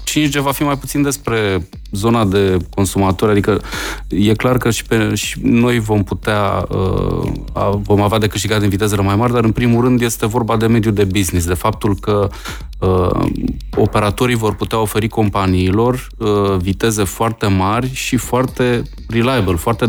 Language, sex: Romanian, male